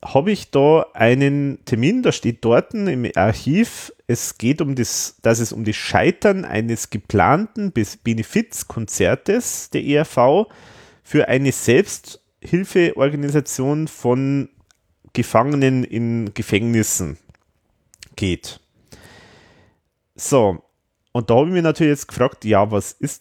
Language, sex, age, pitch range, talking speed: German, male, 30-49, 110-150 Hz, 105 wpm